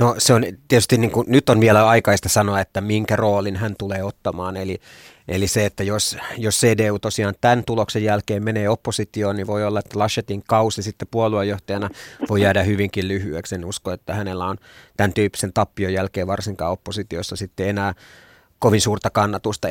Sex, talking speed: male, 175 wpm